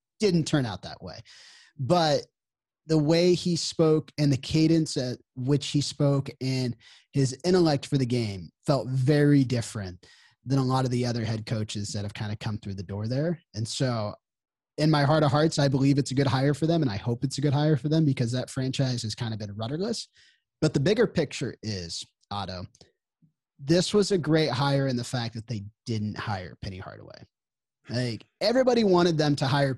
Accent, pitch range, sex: American, 115-155 Hz, male